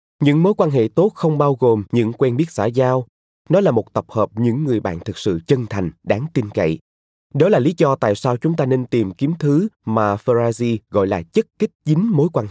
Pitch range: 110-160 Hz